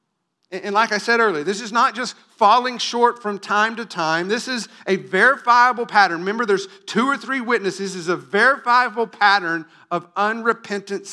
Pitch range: 145-210 Hz